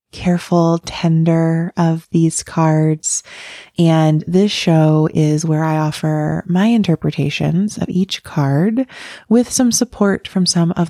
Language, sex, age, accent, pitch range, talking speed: English, female, 20-39, American, 155-195 Hz, 125 wpm